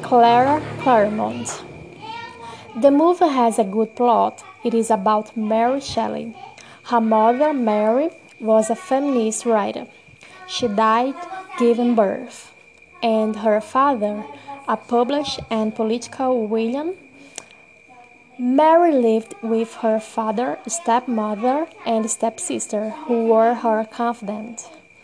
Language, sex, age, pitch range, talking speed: English, female, 20-39, 220-275 Hz, 105 wpm